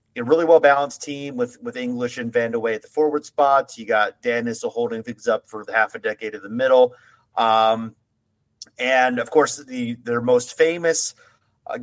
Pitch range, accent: 110-155 Hz, American